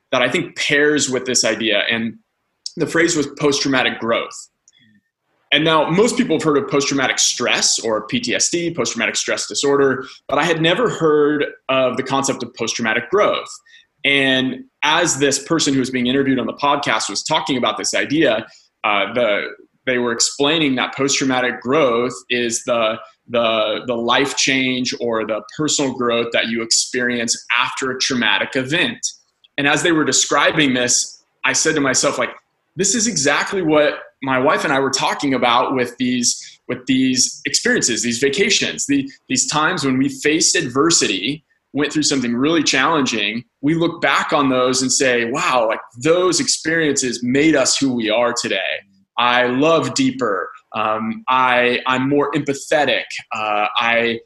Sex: male